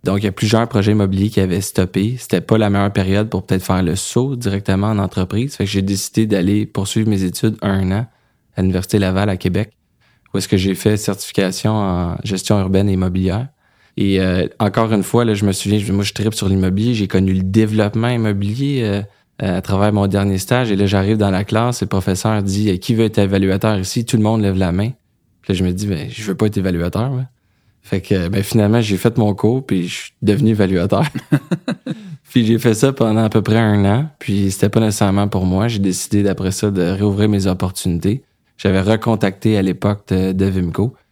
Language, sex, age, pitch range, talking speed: French, male, 20-39, 95-110 Hz, 220 wpm